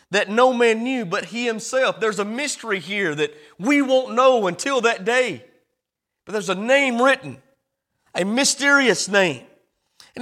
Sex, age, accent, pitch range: male, 30-49, American, 185-265 Hz